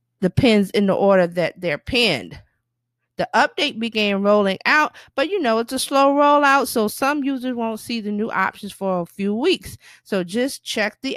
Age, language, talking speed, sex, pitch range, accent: 50-69, English, 190 wpm, female, 185-245 Hz, American